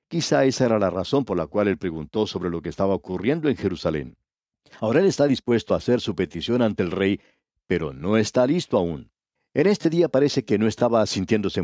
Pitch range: 100-145 Hz